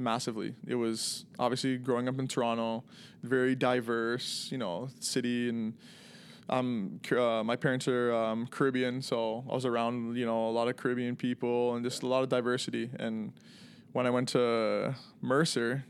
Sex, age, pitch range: male, 20-39, 120-135 Hz